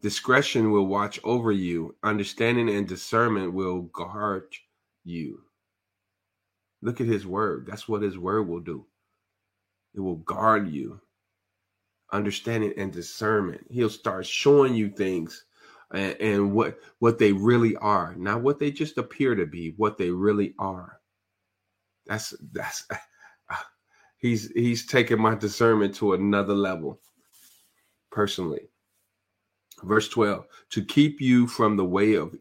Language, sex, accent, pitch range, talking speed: English, male, American, 95-110 Hz, 130 wpm